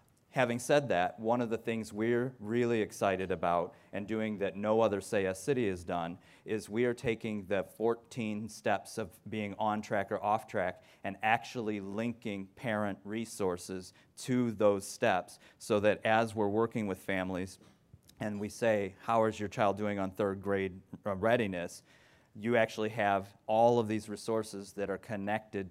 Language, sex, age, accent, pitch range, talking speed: English, male, 40-59, American, 95-110 Hz, 165 wpm